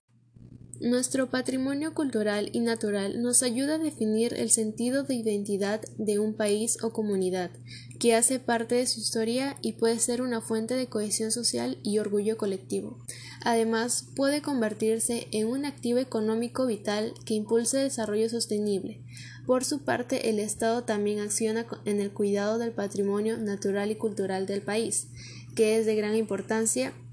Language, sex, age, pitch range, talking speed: Spanish, female, 10-29, 205-240 Hz, 155 wpm